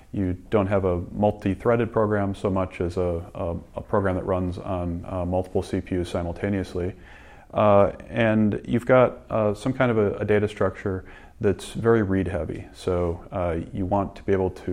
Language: English